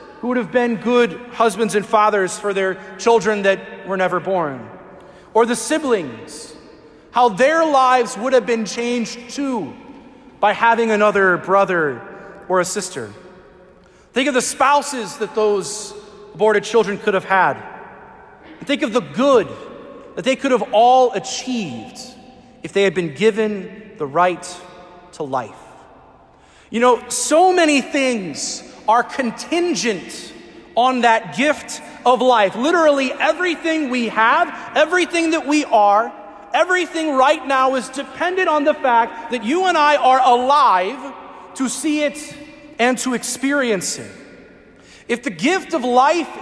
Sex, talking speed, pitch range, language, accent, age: male, 140 wpm, 210-280 Hz, English, American, 30-49